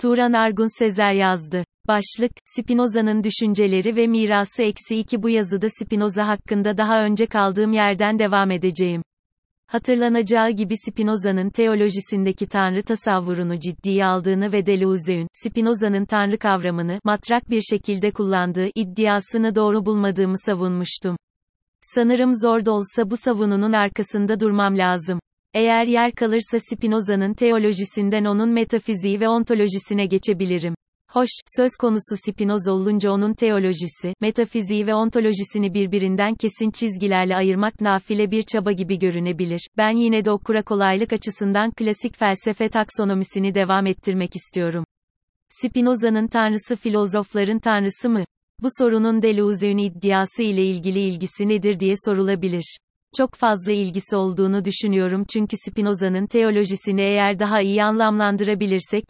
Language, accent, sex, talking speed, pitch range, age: Turkish, native, female, 120 wpm, 195-220 Hz, 30-49